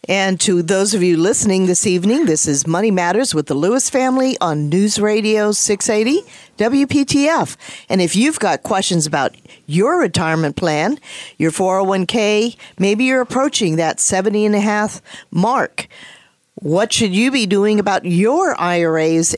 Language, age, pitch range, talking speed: English, 50-69, 170-220 Hz, 150 wpm